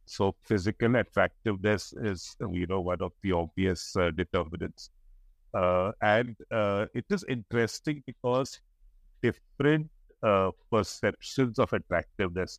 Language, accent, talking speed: English, Indian, 115 wpm